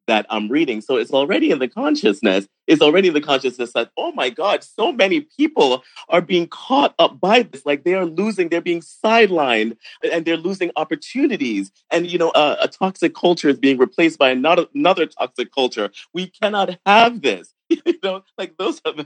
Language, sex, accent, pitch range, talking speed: English, male, American, 125-200 Hz, 185 wpm